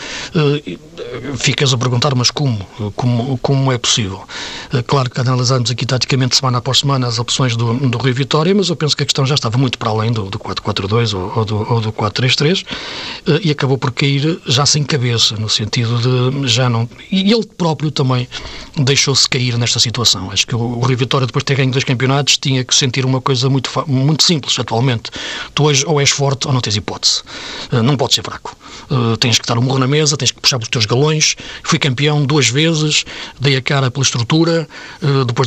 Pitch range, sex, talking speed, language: 120-145 Hz, male, 205 wpm, Portuguese